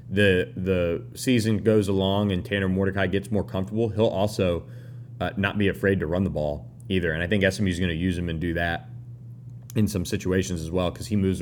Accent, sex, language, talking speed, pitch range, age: American, male, English, 220 wpm, 95-115 Hz, 30-49